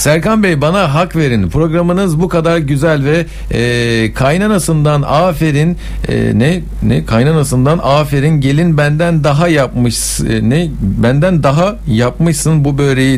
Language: English